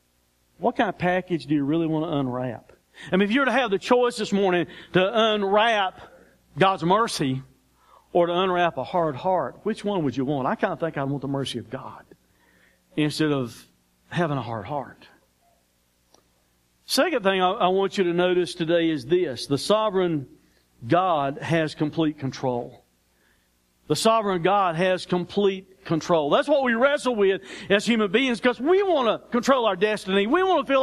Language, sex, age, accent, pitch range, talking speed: English, male, 50-69, American, 135-215 Hz, 180 wpm